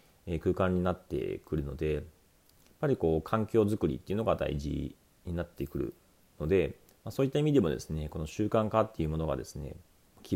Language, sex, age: Japanese, male, 40-59